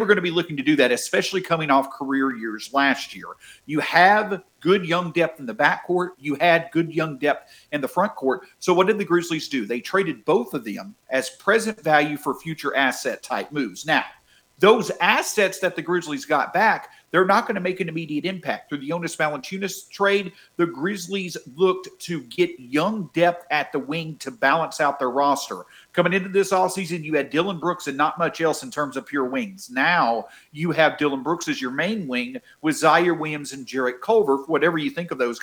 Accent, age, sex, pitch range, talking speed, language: American, 50-69, male, 145-185 Hz, 205 wpm, English